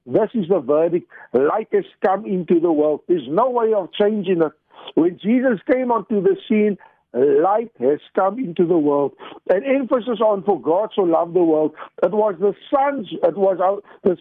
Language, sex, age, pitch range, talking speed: English, male, 60-79, 175-240 Hz, 175 wpm